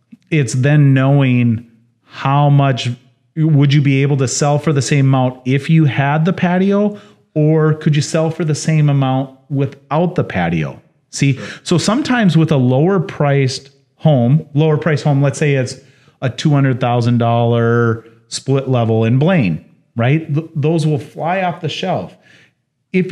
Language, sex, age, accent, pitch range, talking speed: English, male, 30-49, American, 120-155 Hz, 155 wpm